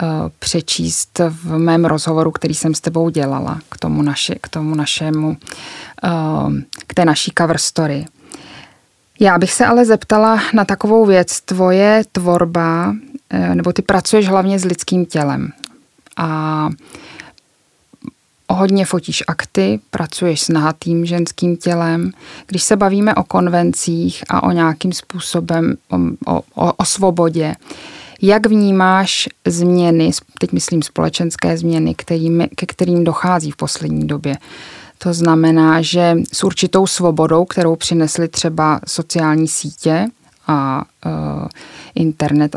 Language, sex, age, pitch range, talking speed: Czech, female, 20-39, 155-180 Hz, 120 wpm